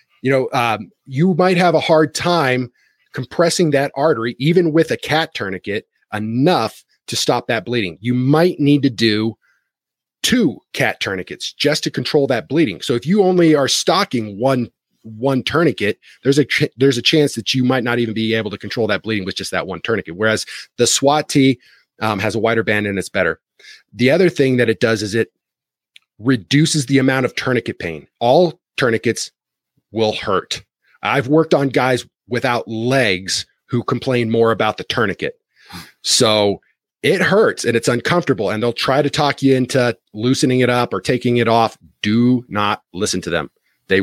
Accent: American